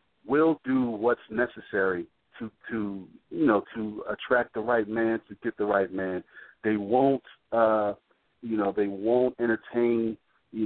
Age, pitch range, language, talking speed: 50-69, 105-125 Hz, English, 150 wpm